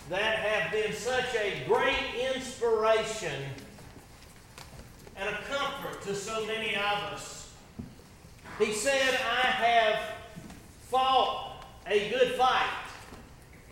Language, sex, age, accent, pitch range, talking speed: English, male, 40-59, American, 210-255 Hz, 100 wpm